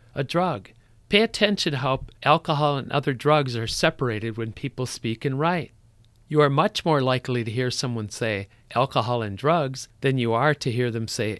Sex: male